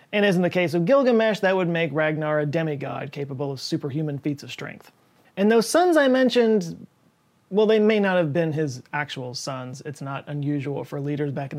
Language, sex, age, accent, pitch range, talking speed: English, male, 30-49, American, 145-185 Hz, 205 wpm